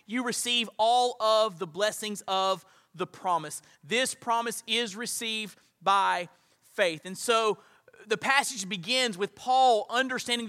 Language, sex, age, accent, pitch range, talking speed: English, male, 30-49, American, 200-265 Hz, 130 wpm